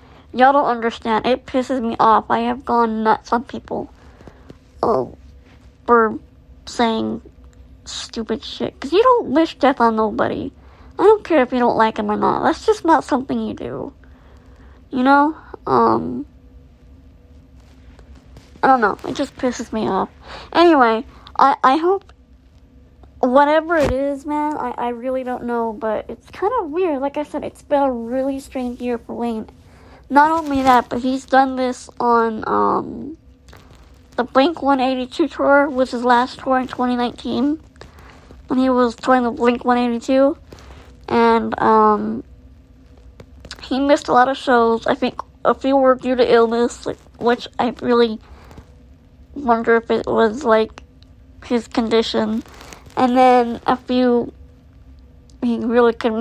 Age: 30-49